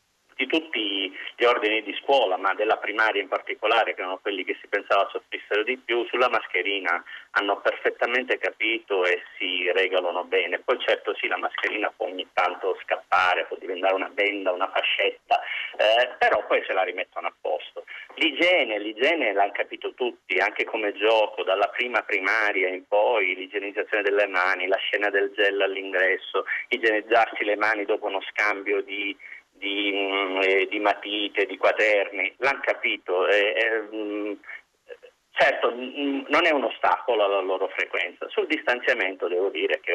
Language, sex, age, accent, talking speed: Italian, male, 30-49, native, 155 wpm